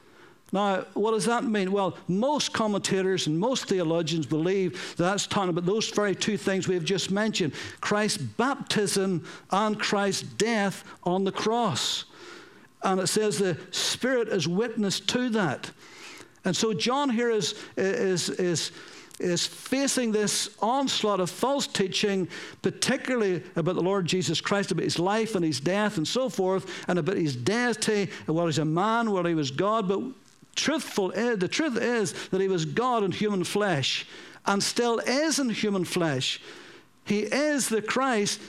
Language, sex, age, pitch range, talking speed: English, male, 60-79, 185-230 Hz, 160 wpm